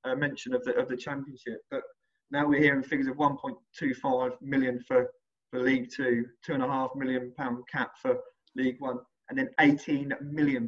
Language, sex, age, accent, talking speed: English, male, 20-39, British, 185 wpm